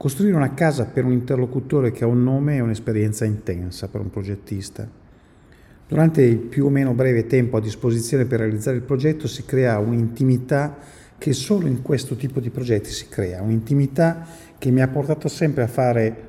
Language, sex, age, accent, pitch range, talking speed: Italian, male, 50-69, native, 110-135 Hz, 180 wpm